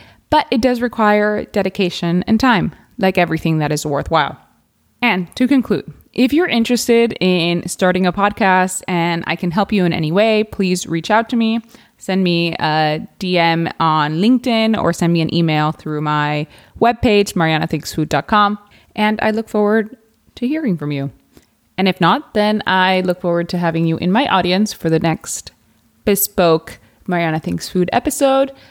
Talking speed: 165 wpm